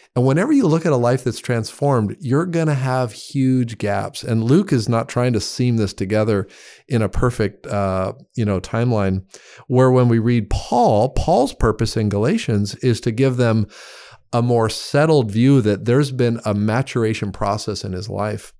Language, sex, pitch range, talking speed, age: English, male, 105-125 Hz, 185 wpm, 40-59